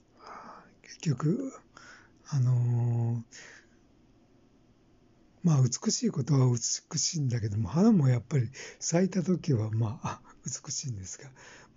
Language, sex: Japanese, male